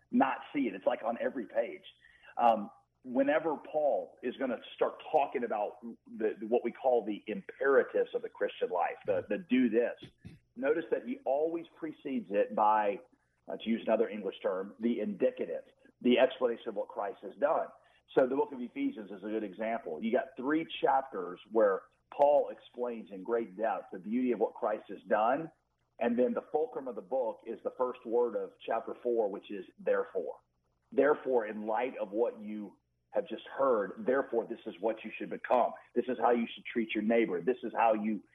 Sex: male